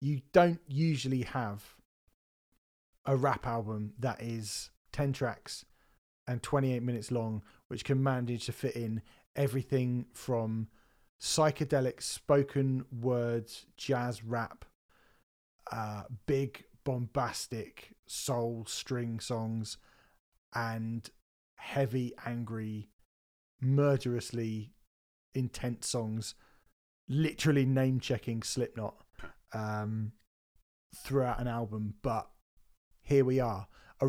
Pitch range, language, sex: 110-135 Hz, English, male